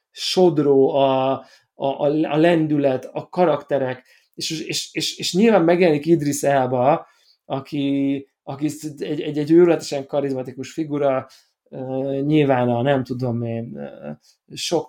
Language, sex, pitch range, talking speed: Hungarian, male, 135-160 Hz, 115 wpm